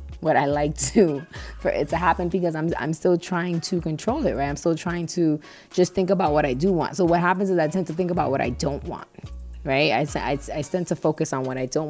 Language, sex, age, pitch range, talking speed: English, female, 20-39, 170-215 Hz, 260 wpm